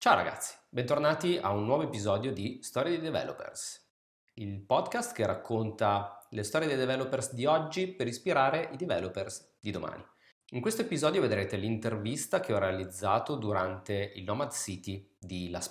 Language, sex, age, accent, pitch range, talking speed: Italian, male, 30-49, native, 100-140 Hz, 155 wpm